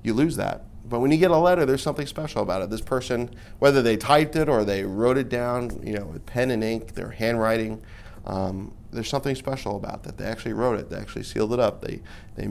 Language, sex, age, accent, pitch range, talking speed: English, male, 30-49, American, 105-125 Hz, 240 wpm